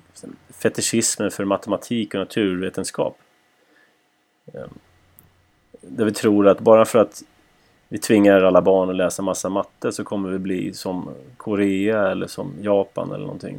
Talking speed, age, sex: 135 wpm, 30-49, male